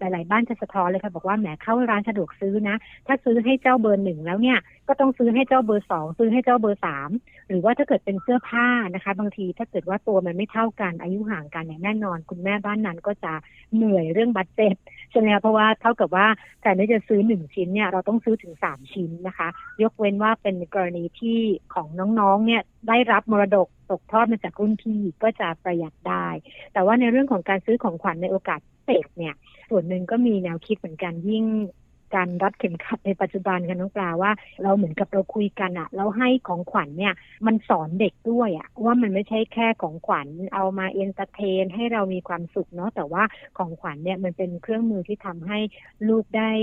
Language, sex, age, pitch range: Thai, female, 60-79, 185-220 Hz